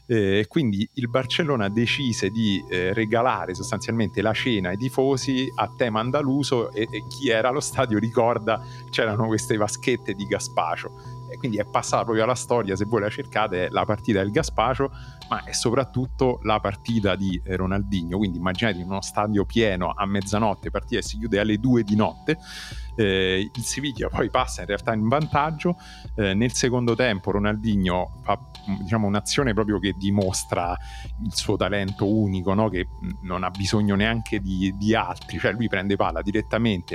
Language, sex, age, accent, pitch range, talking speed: Italian, male, 40-59, native, 100-125 Hz, 165 wpm